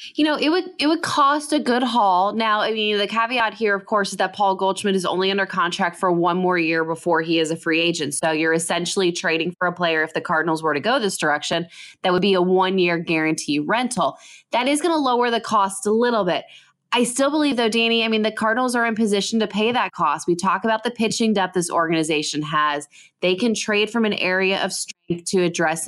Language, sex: English, female